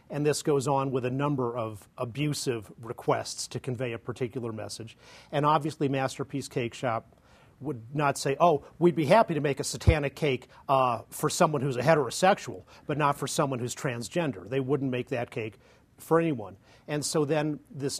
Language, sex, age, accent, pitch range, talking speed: English, male, 40-59, American, 125-145 Hz, 185 wpm